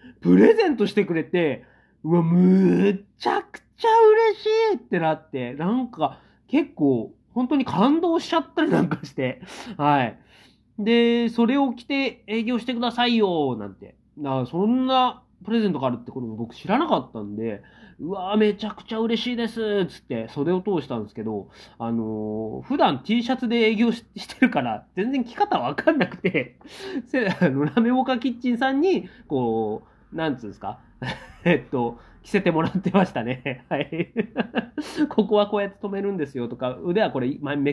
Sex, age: male, 30-49